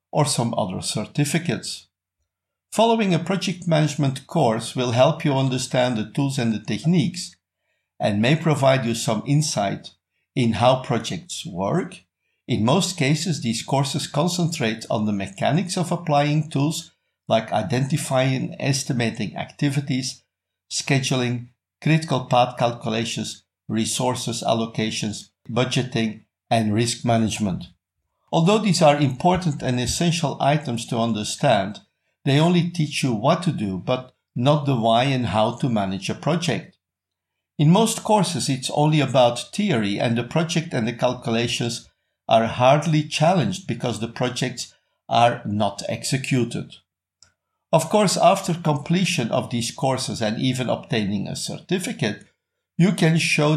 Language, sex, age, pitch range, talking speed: English, male, 50-69, 115-155 Hz, 130 wpm